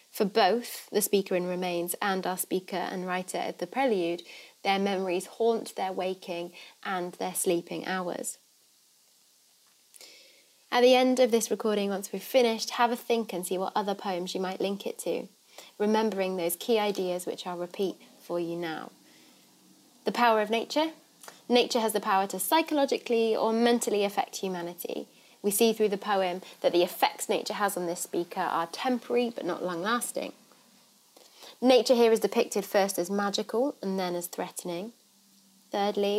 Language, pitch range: English, 180-230 Hz